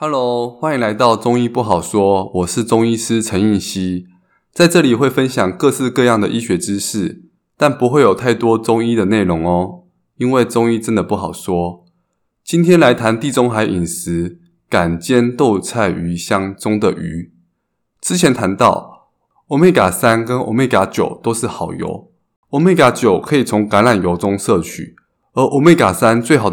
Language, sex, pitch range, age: Chinese, male, 95-125 Hz, 20-39